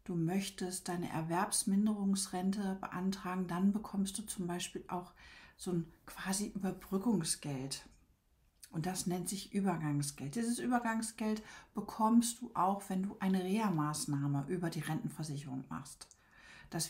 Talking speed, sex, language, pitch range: 120 wpm, female, German, 180-230 Hz